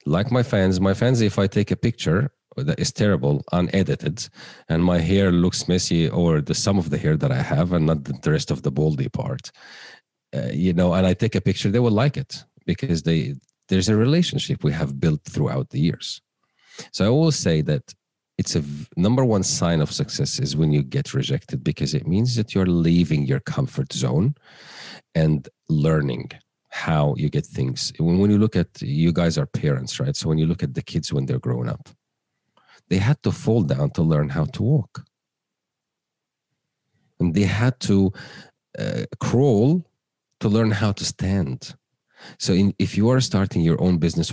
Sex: male